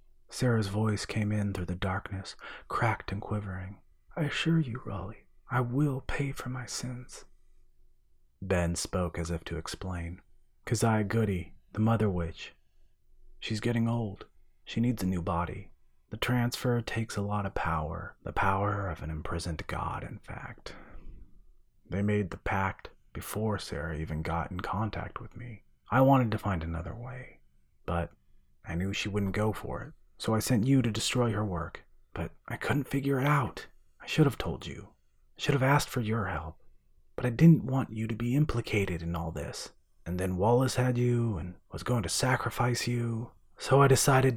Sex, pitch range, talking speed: male, 85-120 Hz, 175 wpm